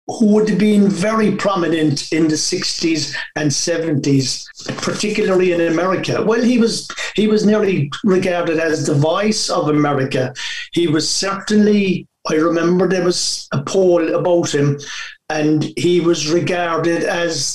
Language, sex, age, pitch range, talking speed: English, male, 60-79, 155-200 Hz, 140 wpm